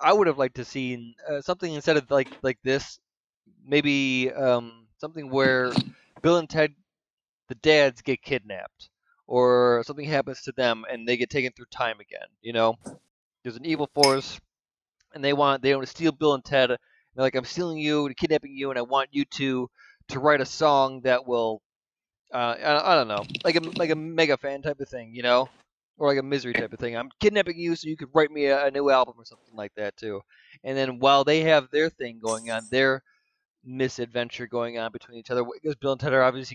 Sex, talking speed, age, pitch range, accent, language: male, 215 wpm, 20-39, 125-150 Hz, American, English